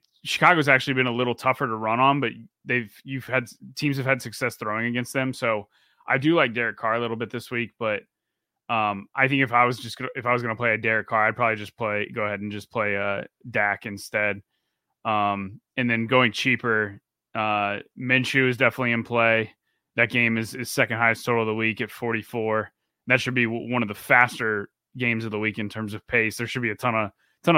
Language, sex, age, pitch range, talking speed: English, male, 20-39, 110-130 Hz, 235 wpm